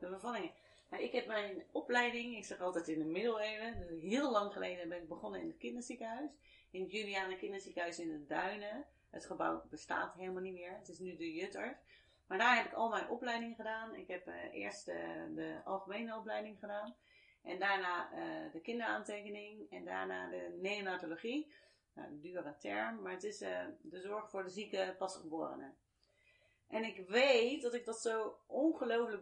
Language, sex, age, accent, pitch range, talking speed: Dutch, female, 30-49, Dutch, 185-245 Hz, 180 wpm